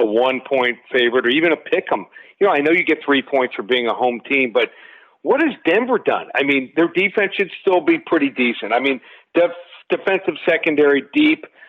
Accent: American